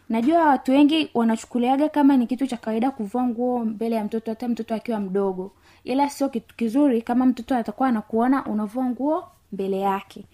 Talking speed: 175 wpm